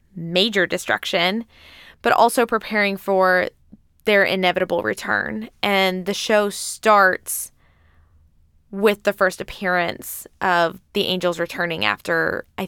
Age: 10-29